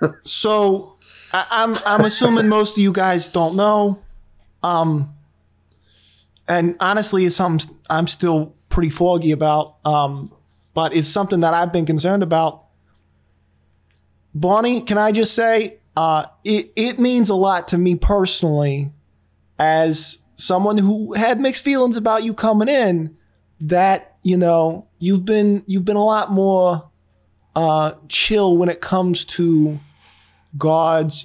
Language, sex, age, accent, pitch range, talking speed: English, male, 20-39, American, 155-205 Hz, 135 wpm